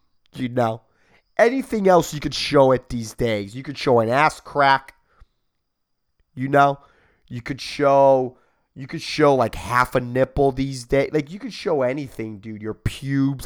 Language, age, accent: English, 30-49, American